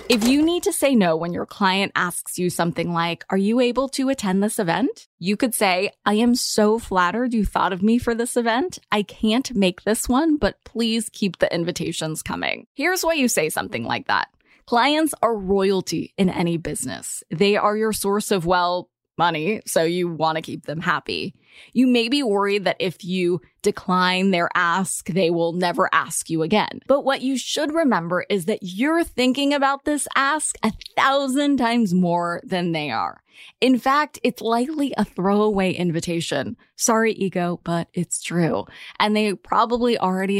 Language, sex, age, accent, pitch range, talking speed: English, female, 20-39, American, 180-255 Hz, 185 wpm